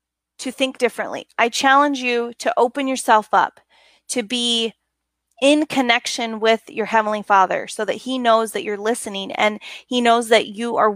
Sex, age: female, 30-49